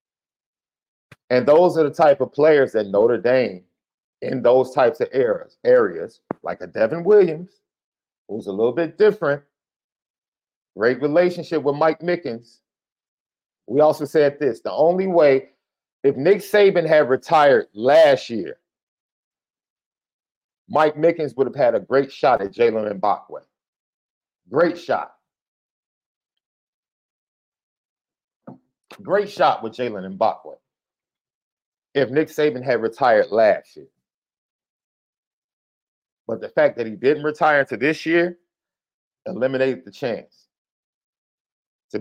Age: 50-69